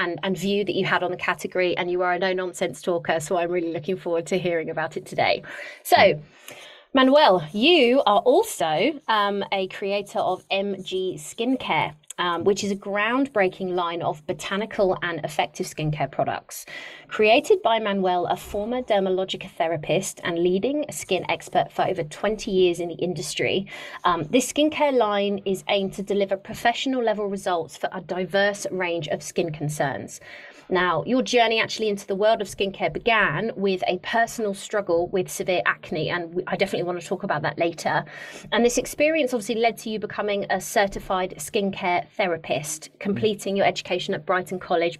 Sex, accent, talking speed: female, British, 170 wpm